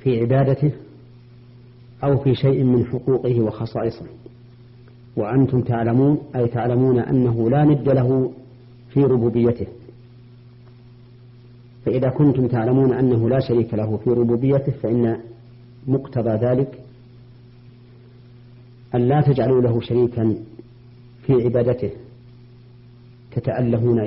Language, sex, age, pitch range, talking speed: Arabic, female, 40-59, 120-125 Hz, 95 wpm